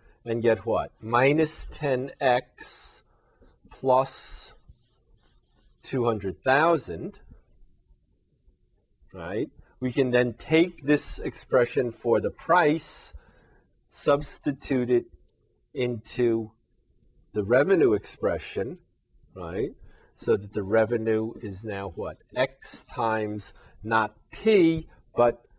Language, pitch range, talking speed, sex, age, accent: English, 105-130 Hz, 85 wpm, male, 50-69, American